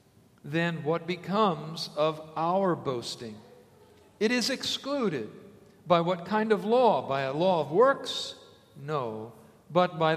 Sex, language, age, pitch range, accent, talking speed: male, English, 50-69, 140-185 Hz, American, 130 wpm